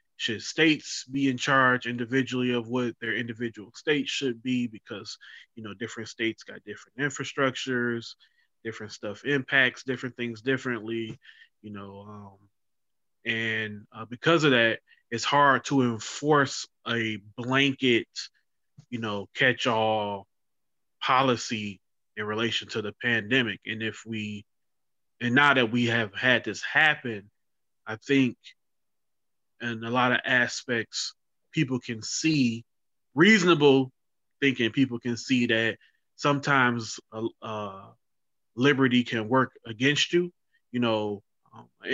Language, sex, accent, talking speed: English, male, American, 125 wpm